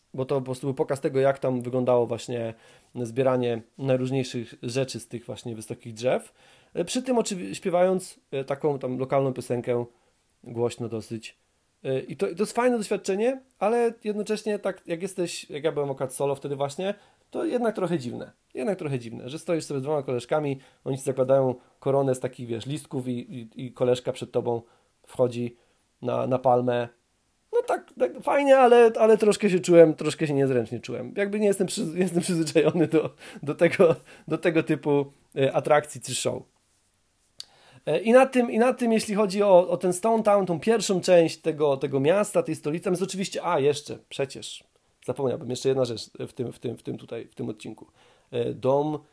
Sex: male